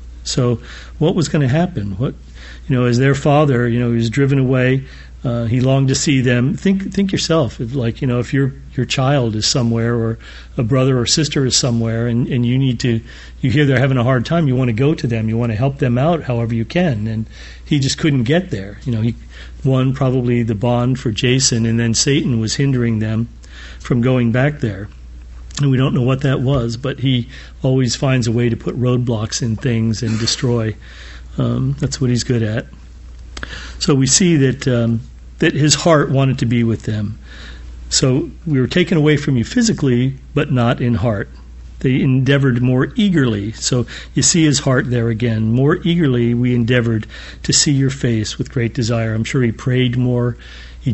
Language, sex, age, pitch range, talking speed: English, male, 40-59, 110-135 Hz, 205 wpm